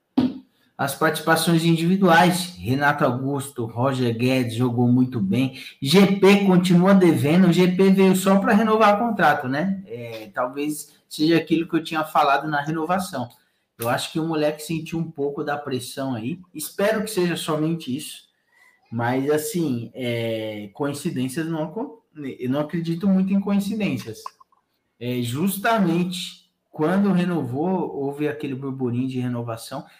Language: Portuguese